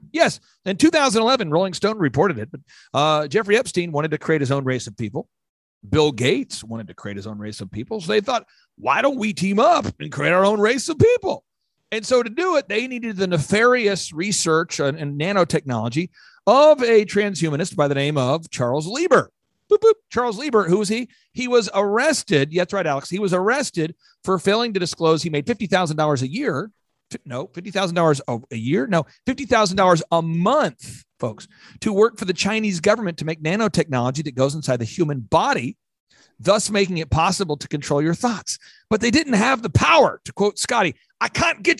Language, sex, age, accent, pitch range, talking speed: English, male, 40-59, American, 150-220 Hz, 200 wpm